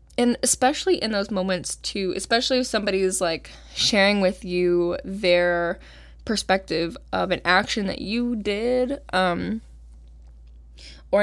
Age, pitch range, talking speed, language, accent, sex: 10-29, 180-235 Hz, 130 wpm, English, American, female